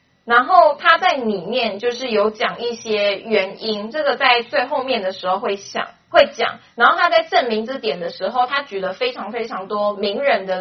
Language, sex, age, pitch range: Chinese, female, 20-39, 205-280 Hz